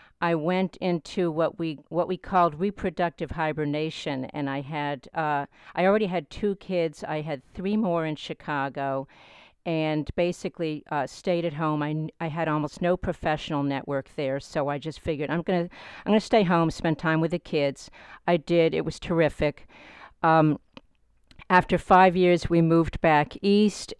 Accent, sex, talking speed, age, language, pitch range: American, female, 175 wpm, 50-69, English, 150-175 Hz